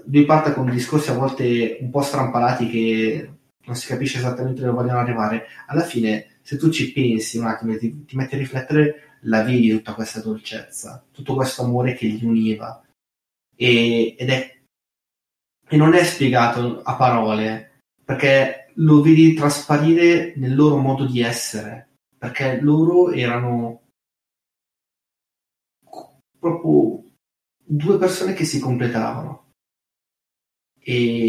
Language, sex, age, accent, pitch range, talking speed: Italian, male, 30-49, native, 115-140 Hz, 135 wpm